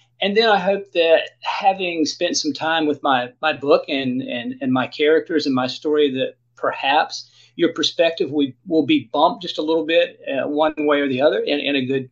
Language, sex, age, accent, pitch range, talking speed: English, male, 40-59, American, 130-185 Hz, 210 wpm